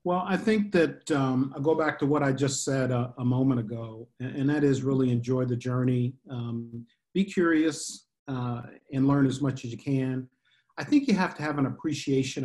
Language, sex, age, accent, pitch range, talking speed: English, male, 50-69, American, 130-150 Hz, 210 wpm